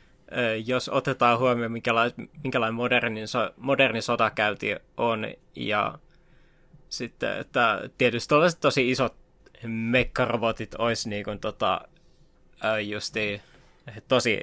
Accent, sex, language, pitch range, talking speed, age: native, male, Finnish, 110-145 Hz, 75 wpm, 20-39